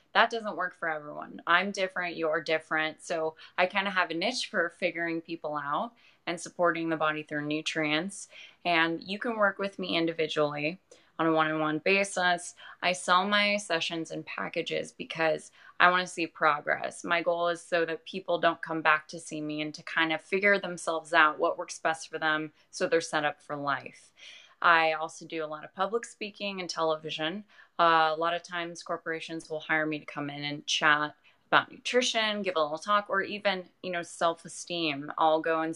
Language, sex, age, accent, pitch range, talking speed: English, female, 20-39, American, 155-180 Hz, 195 wpm